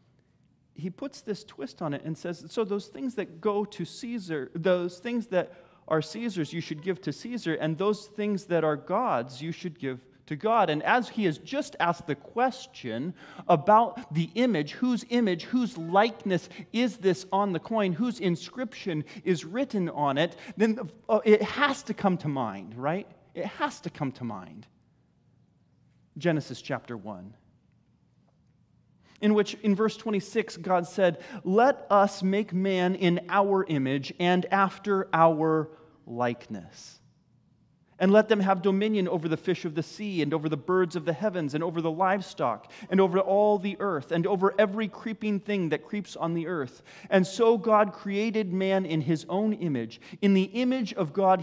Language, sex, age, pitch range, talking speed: English, male, 30-49, 155-210 Hz, 175 wpm